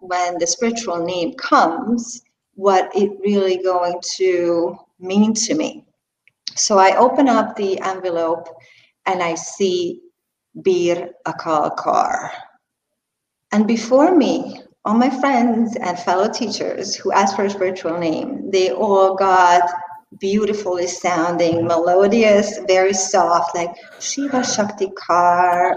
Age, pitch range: 40-59, 175-235 Hz